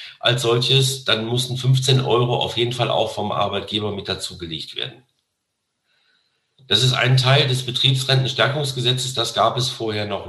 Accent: German